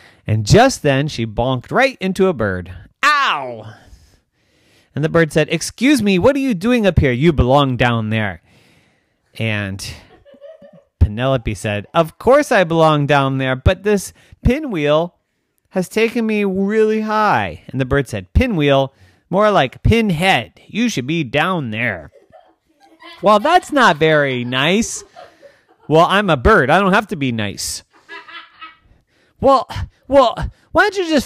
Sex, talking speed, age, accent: male, 150 wpm, 30-49, American